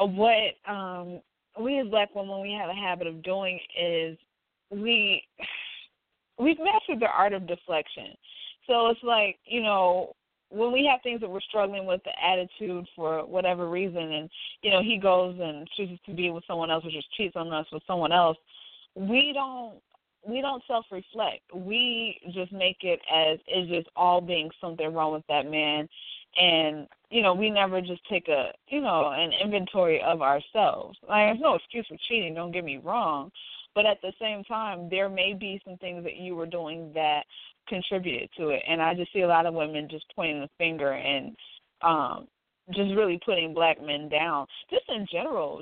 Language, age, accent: English, 20-39, American